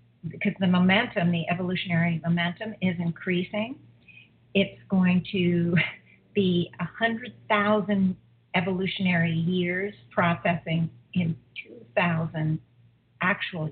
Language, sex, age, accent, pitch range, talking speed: English, female, 50-69, American, 165-210 Hz, 95 wpm